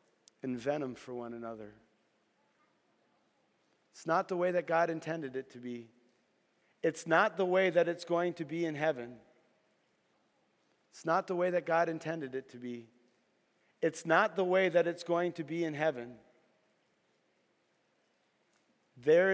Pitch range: 125-170 Hz